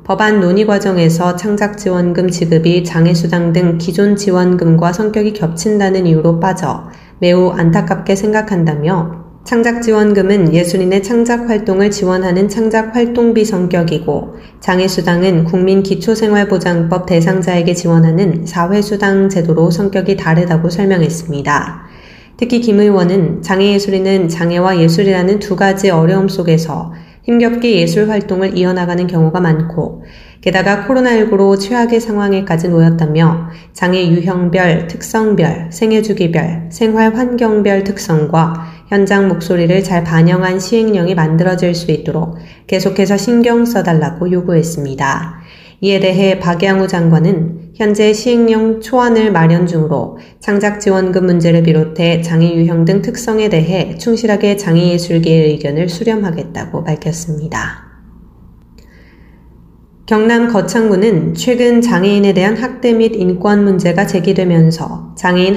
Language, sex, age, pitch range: Korean, female, 20-39, 165-205 Hz